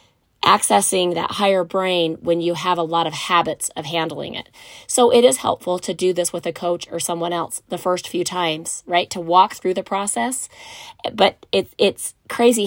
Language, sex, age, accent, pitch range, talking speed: English, female, 30-49, American, 175-205 Hz, 190 wpm